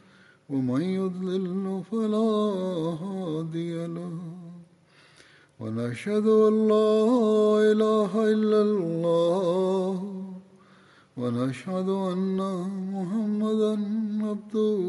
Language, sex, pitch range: Tamil, male, 165-210 Hz